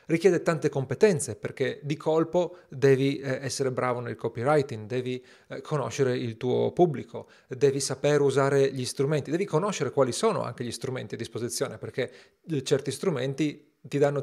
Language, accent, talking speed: Italian, native, 150 wpm